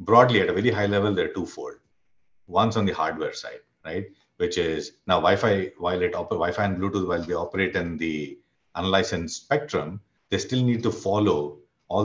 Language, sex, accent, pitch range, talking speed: English, male, Indian, 85-115 Hz, 190 wpm